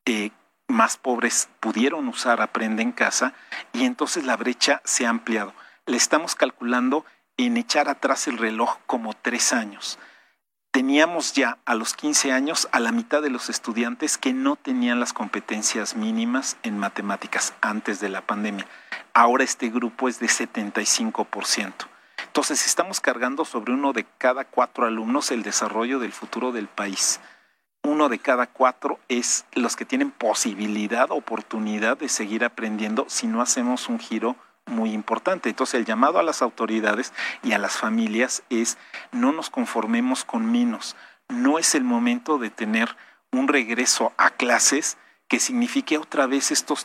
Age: 40-59